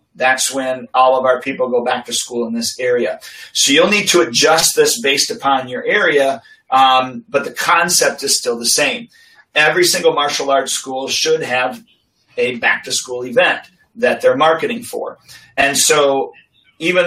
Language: English